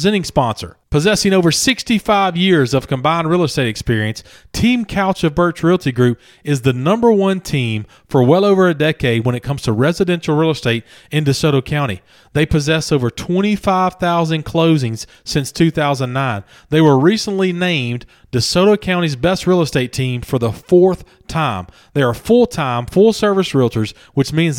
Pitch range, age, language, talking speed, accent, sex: 130-180 Hz, 40-59, English, 160 wpm, American, male